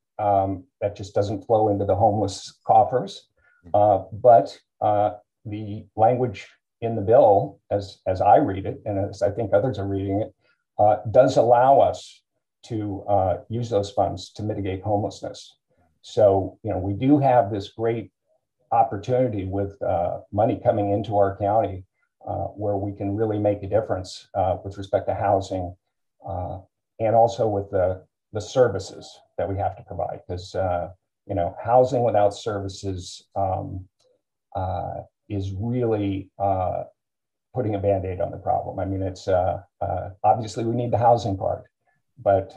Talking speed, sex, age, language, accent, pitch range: 160 wpm, male, 50-69, English, American, 95-110 Hz